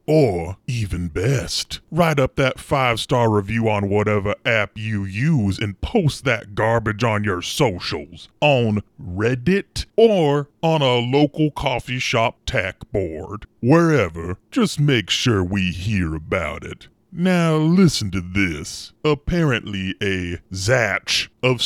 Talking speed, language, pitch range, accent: 125 wpm, English, 95-130 Hz, American